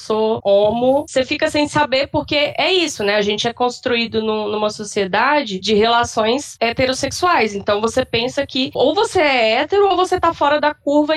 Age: 20-39